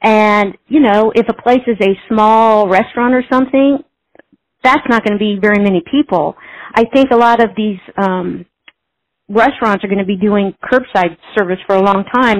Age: 50-69